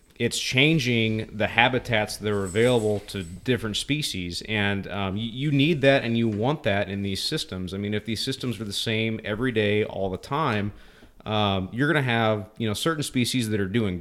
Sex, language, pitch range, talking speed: male, English, 95-115 Hz, 205 wpm